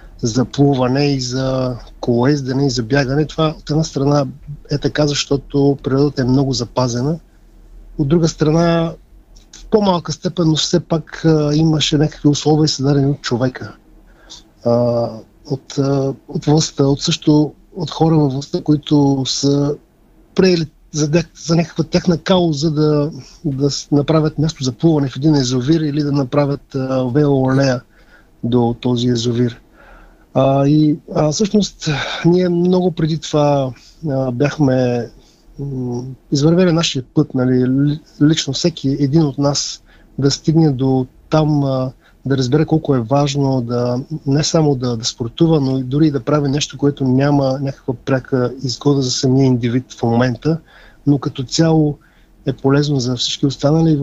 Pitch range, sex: 130-155 Hz, male